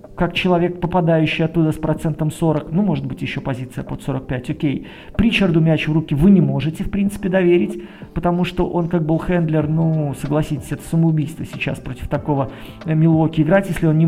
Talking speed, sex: 190 wpm, male